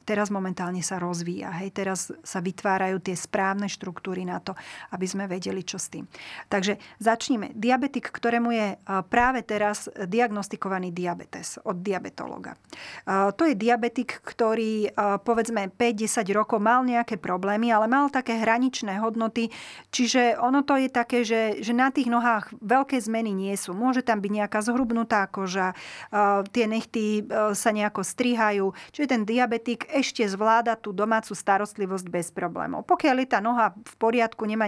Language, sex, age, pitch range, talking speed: Slovak, female, 30-49, 195-235 Hz, 145 wpm